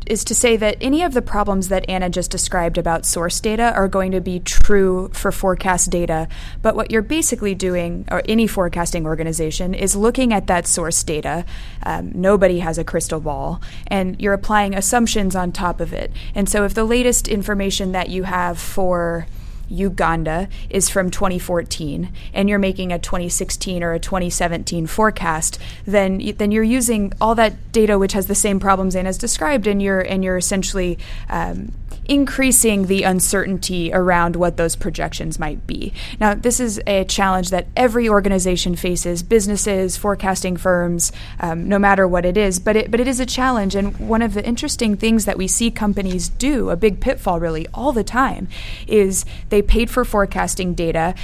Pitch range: 180-210 Hz